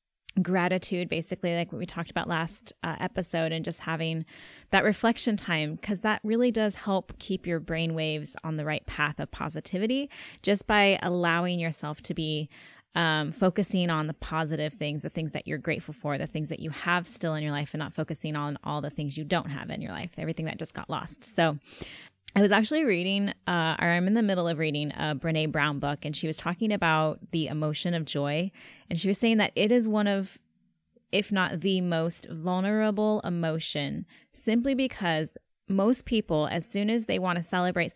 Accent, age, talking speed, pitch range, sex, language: American, 20-39, 200 wpm, 160-200 Hz, female, English